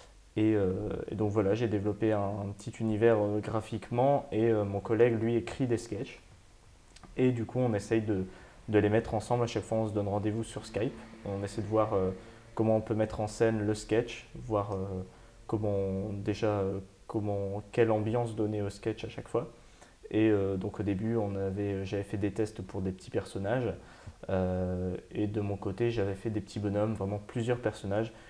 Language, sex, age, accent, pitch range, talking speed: French, male, 20-39, French, 100-115 Hz, 200 wpm